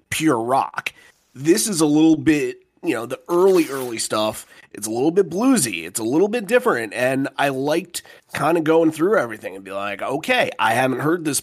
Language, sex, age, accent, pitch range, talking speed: English, male, 30-49, American, 125-160 Hz, 205 wpm